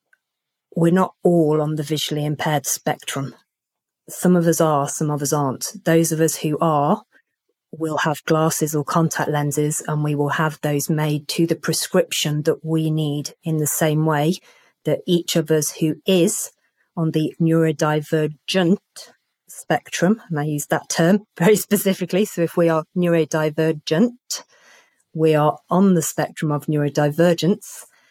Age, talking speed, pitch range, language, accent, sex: 30-49, 155 wpm, 150-170 Hz, English, British, female